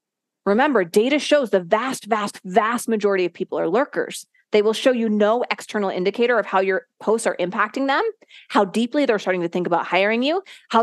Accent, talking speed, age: American, 200 wpm, 30-49